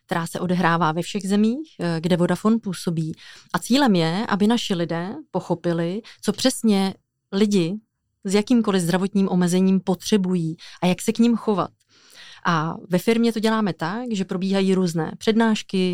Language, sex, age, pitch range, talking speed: Czech, female, 30-49, 175-205 Hz, 150 wpm